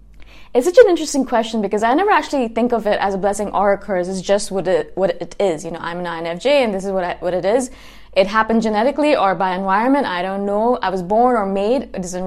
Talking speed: 265 wpm